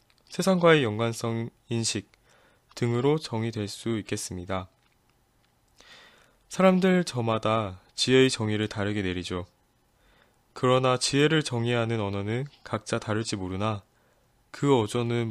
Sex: male